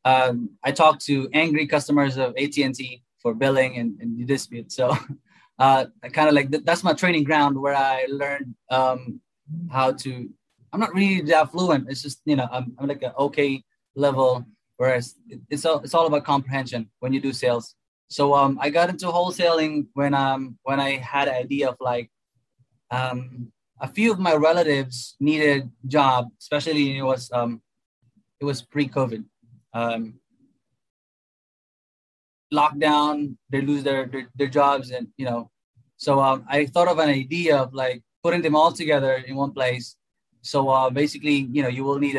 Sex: male